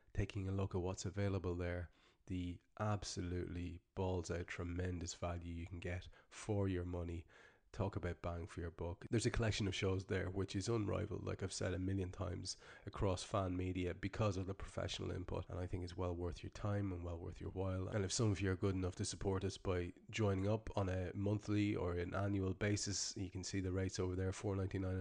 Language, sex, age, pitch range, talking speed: English, male, 30-49, 90-100 Hz, 215 wpm